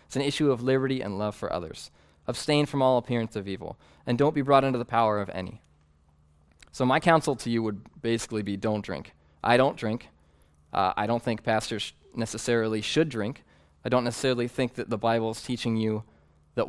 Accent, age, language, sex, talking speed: American, 20-39, English, male, 200 wpm